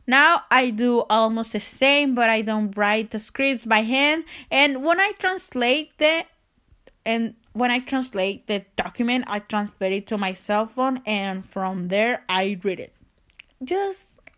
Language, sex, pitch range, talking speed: English, female, 195-265 Hz, 165 wpm